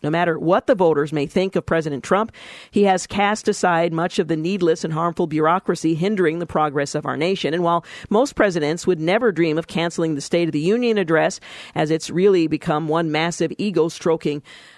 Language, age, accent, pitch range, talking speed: English, 50-69, American, 160-195 Hz, 200 wpm